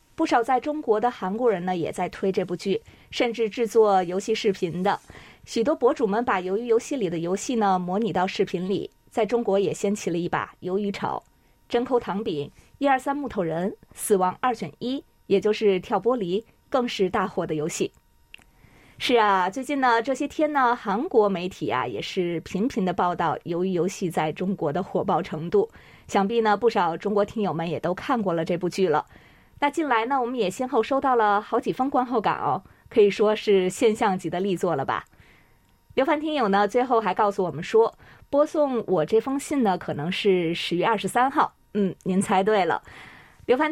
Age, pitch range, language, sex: 20-39, 185-240 Hz, Chinese, female